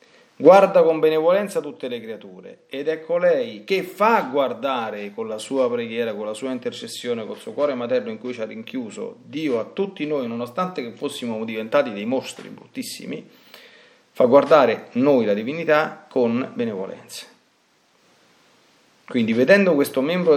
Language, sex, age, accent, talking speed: Italian, male, 40-59, native, 150 wpm